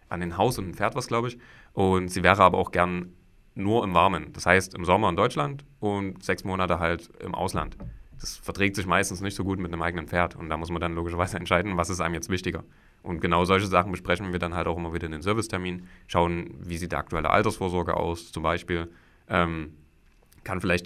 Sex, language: male, German